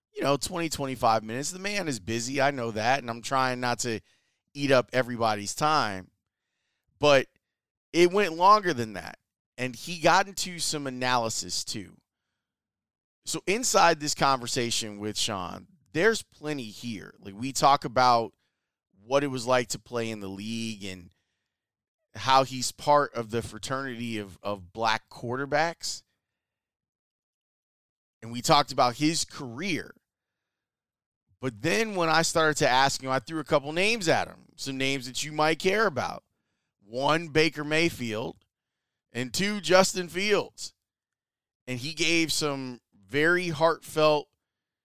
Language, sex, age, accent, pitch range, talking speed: English, male, 30-49, American, 115-155 Hz, 145 wpm